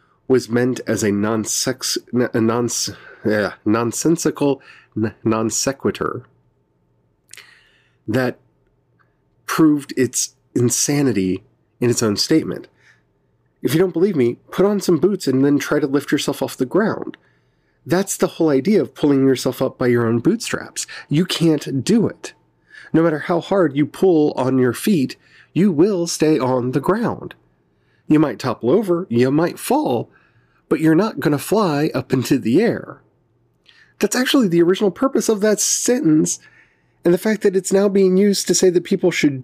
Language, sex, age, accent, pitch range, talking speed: English, male, 40-59, American, 120-185 Hz, 160 wpm